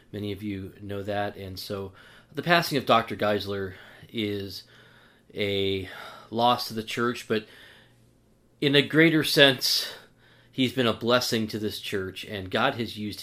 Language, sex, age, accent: English, male, 30-49, American